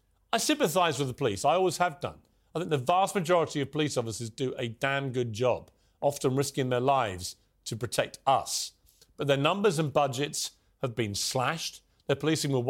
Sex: male